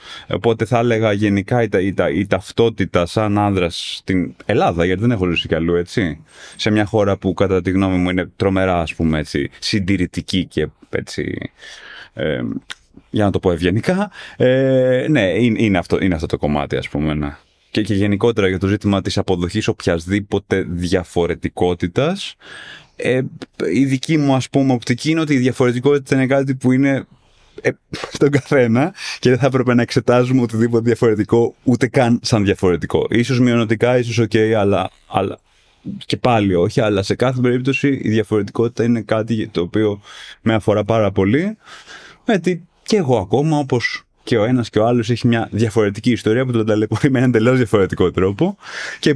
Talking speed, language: 175 wpm, Greek